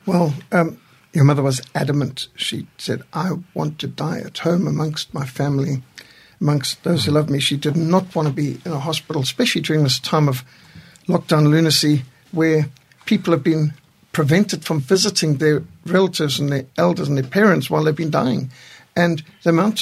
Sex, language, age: male, English, 60-79